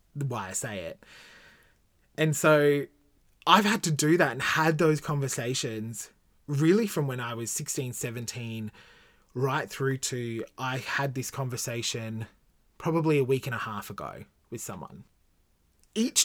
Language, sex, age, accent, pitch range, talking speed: English, male, 20-39, Australian, 100-145 Hz, 145 wpm